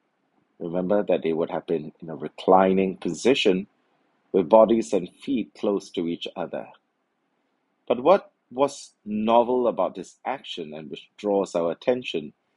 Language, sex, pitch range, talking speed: English, male, 90-120 Hz, 145 wpm